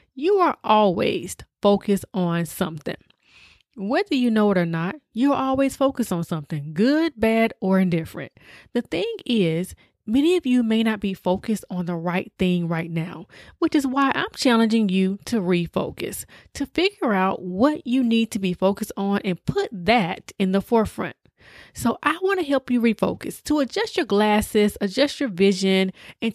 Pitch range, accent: 190-260 Hz, American